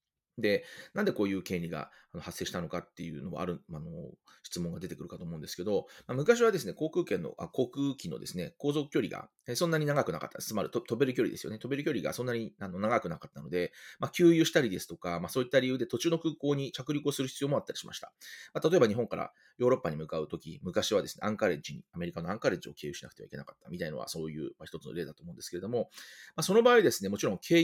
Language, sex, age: Japanese, male, 30-49